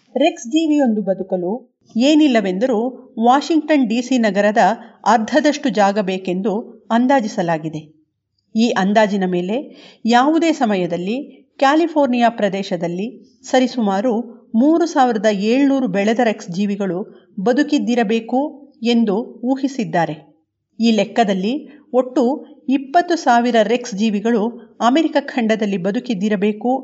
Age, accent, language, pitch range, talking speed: 50-69, native, Kannada, 205-265 Hz, 85 wpm